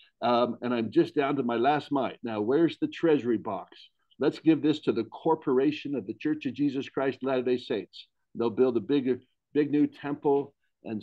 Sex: male